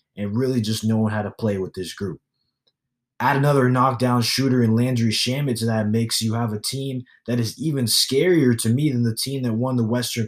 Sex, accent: male, American